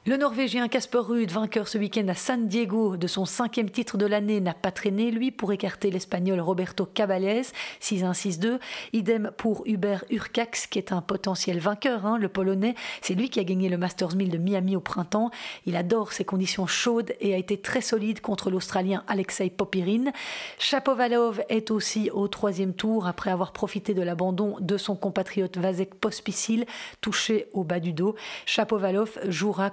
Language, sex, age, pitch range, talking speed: French, female, 40-59, 195-225 Hz, 175 wpm